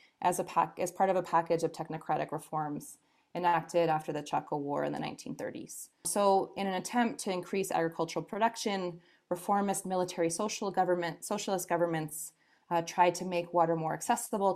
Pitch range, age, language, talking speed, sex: 165-200 Hz, 20-39, English, 165 wpm, female